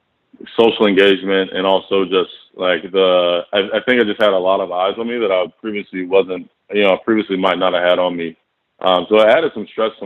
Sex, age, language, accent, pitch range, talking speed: male, 20-39, English, American, 95-115 Hz, 235 wpm